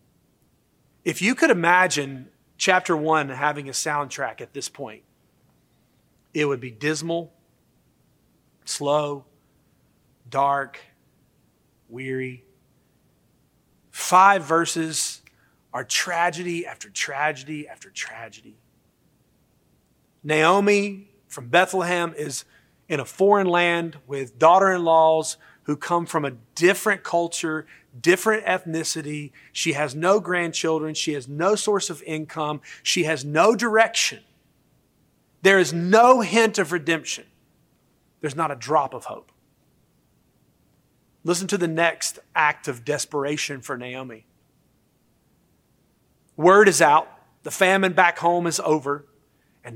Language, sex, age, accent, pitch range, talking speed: English, male, 40-59, American, 140-175 Hz, 110 wpm